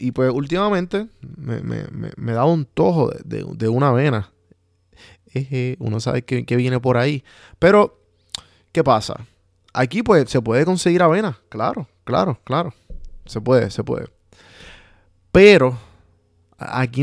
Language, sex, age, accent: Spanish, male, 20-39, Venezuelan